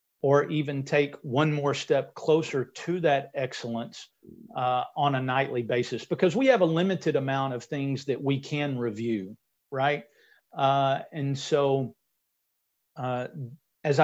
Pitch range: 120-150 Hz